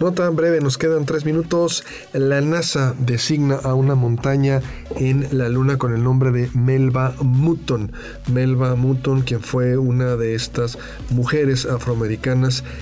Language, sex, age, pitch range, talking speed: Spanish, male, 40-59, 120-140 Hz, 145 wpm